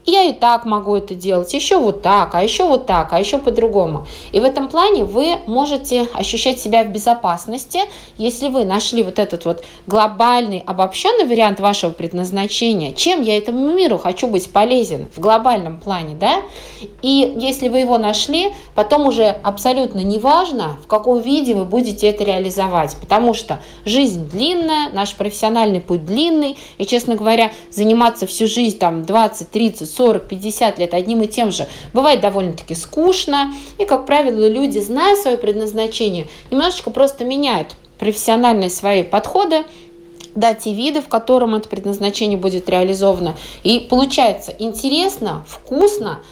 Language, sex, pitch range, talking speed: Russian, female, 190-255 Hz, 150 wpm